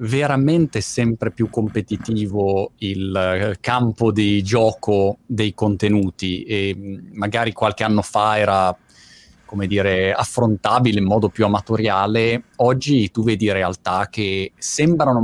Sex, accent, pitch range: male, native, 100-120 Hz